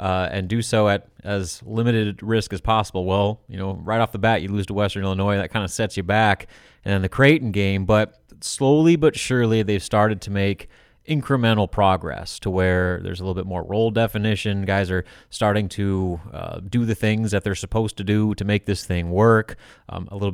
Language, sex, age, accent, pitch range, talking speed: English, male, 30-49, American, 95-115 Hz, 215 wpm